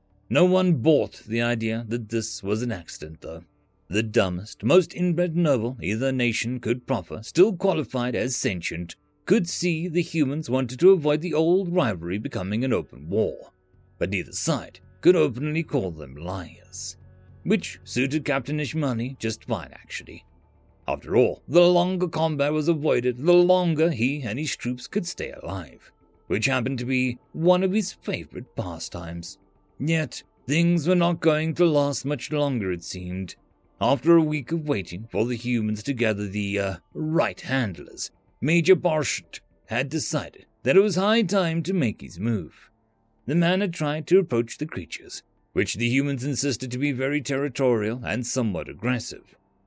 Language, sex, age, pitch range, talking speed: English, male, 40-59, 105-165 Hz, 165 wpm